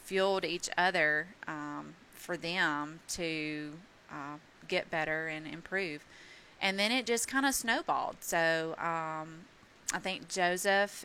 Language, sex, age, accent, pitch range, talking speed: English, female, 30-49, American, 160-190 Hz, 130 wpm